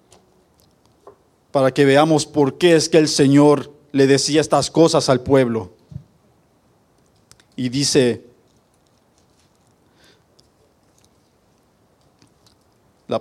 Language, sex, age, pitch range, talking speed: Spanish, male, 50-69, 120-160 Hz, 80 wpm